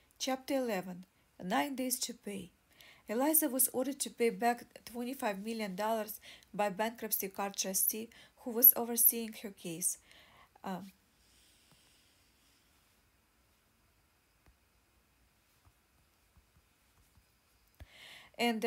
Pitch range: 205-235 Hz